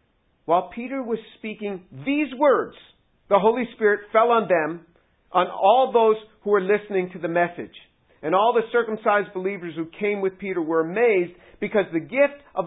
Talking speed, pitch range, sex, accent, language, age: 170 wpm, 190-255 Hz, male, American, English, 50-69